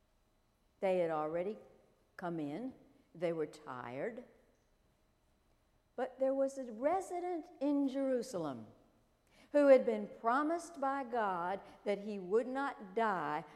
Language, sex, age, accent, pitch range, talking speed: English, female, 60-79, American, 165-250 Hz, 115 wpm